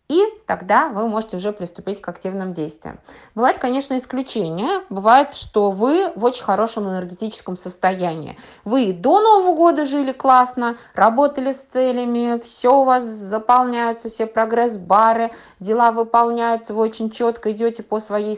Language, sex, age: Russian, female, 20-39